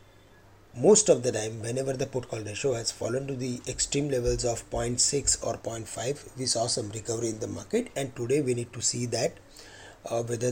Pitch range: 105-135 Hz